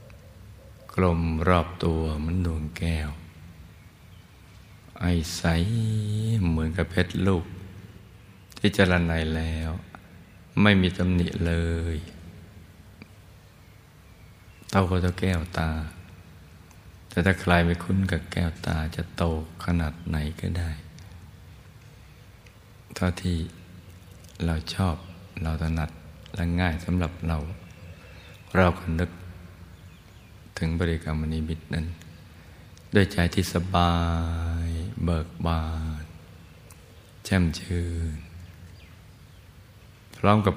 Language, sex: Thai, male